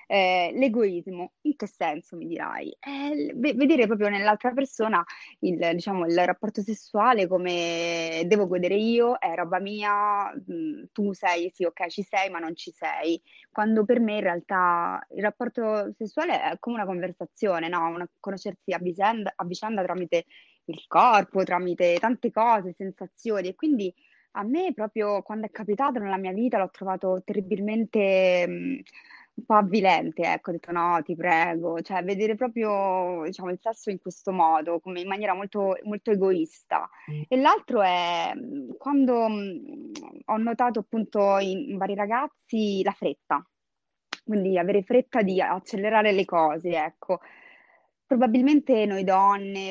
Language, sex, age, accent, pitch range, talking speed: Italian, female, 20-39, native, 180-225 Hz, 150 wpm